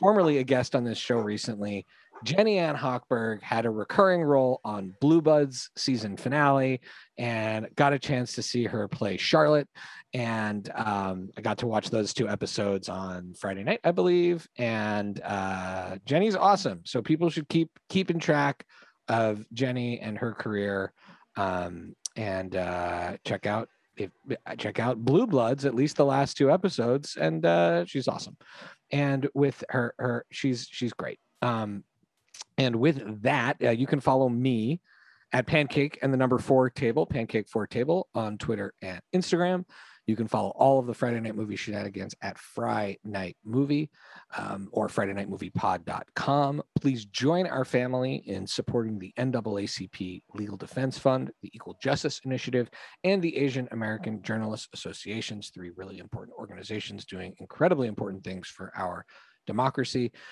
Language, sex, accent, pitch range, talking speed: English, male, American, 105-140 Hz, 155 wpm